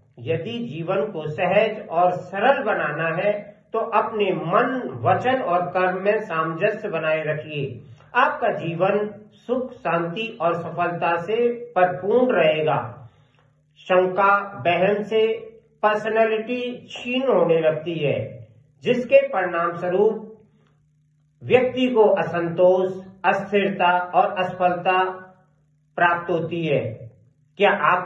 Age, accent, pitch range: 50-69, native, 160-210 Hz